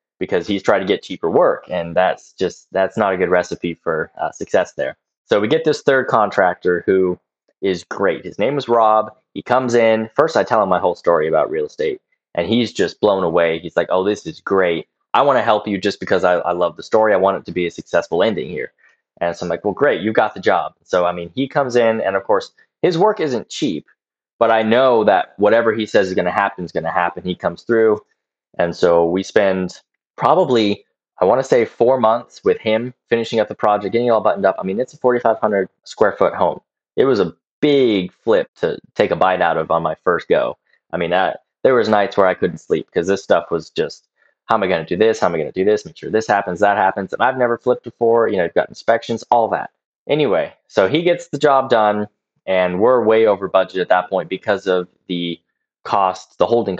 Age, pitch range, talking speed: 20-39, 95-125 Hz, 245 wpm